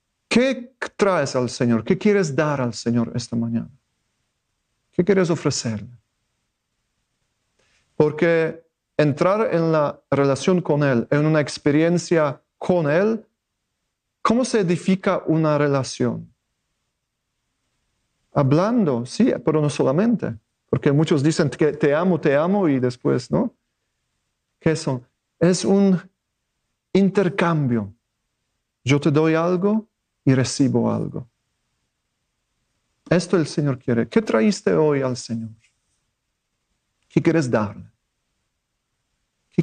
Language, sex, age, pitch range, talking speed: English, male, 40-59, 125-180 Hz, 110 wpm